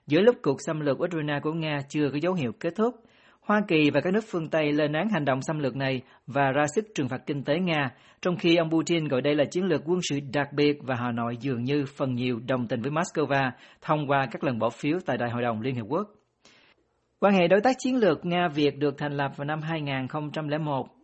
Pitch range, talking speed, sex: 135-170 Hz, 245 wpm, male